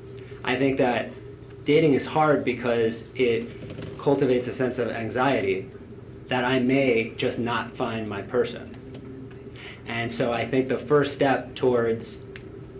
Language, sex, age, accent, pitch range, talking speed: English, male, 30-49, American, 120-135 Hz, 135 wpm